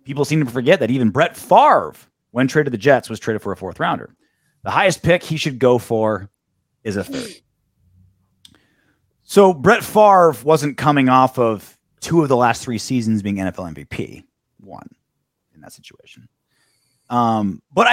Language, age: English, 30-49